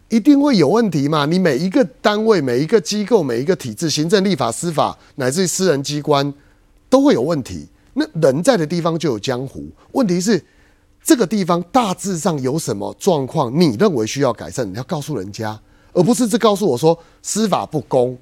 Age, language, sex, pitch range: 30-49, Chinese, male, 125-205 Hz